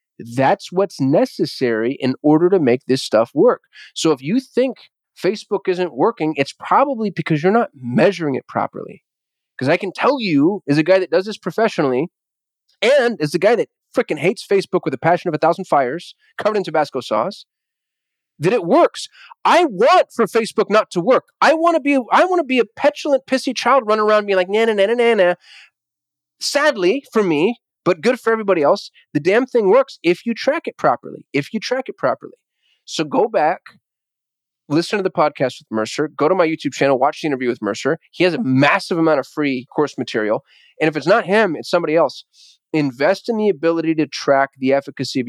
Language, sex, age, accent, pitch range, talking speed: English, male, 30-49, American, 145-230 Hz, 205 wpm